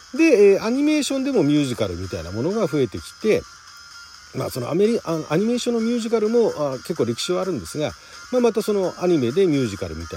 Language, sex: Japanese, male